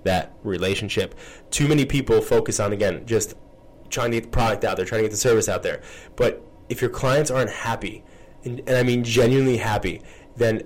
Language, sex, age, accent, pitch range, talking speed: English, male, 20-39, American, 110-130 Hz, 205 wpm